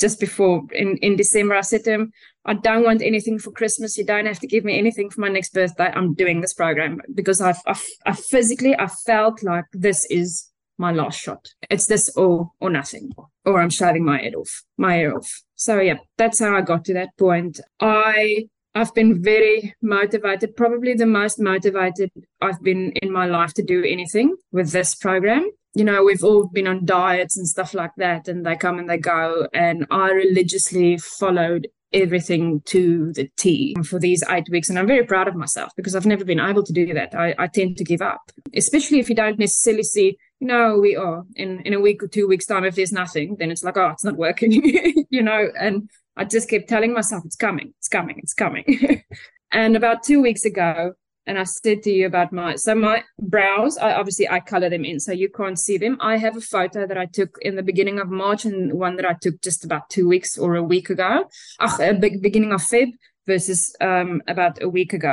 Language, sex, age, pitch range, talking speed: English, female, 20-39, 180-220 Hz, 215 wpm